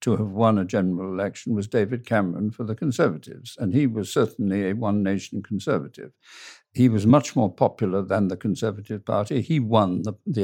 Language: English